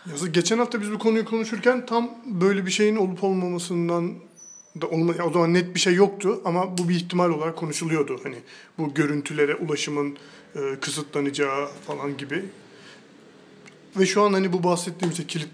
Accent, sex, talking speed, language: native, male, 155 wpm, Turkish